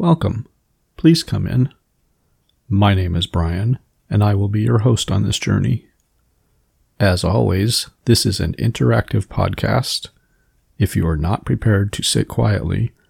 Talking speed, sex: 145 wpm, male